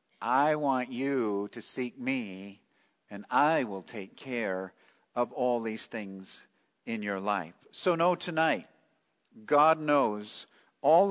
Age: 50-69